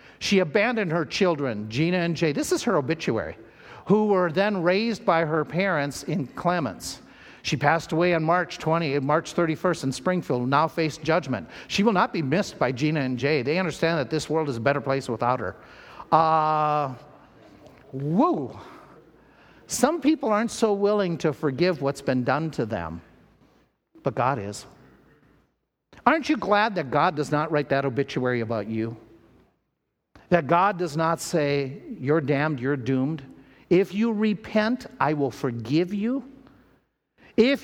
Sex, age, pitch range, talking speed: male, 50-69, 150-215 Hz, 160 wpm